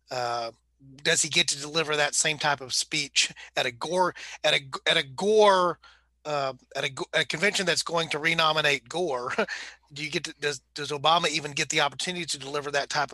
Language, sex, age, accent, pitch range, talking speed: English, male, 30-49, American, 135-160 Hz, 200 wpm